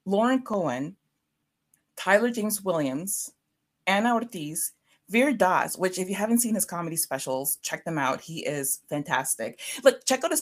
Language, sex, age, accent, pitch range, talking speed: English, female, 30-49, American, 165-220 Hz, 155 wpm